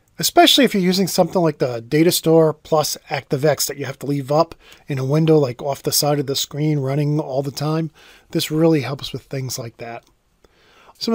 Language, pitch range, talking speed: English, 145-195 Hz, 205 wpm